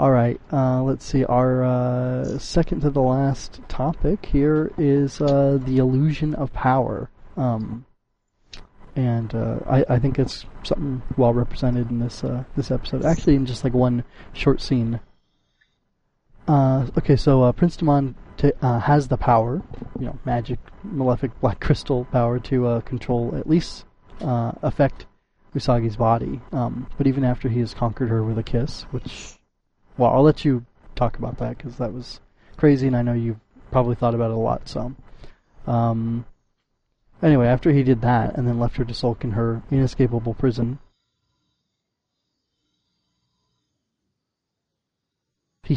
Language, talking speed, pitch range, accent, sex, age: English, 155 wpm, 120-135 Hz, American, male, 30-49